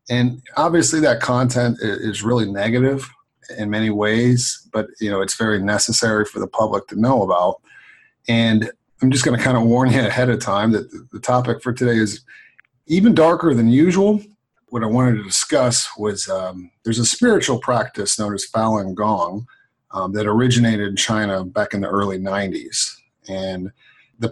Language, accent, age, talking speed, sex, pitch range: English, American, 40-59, 175 wpm, male, 105-125 Hz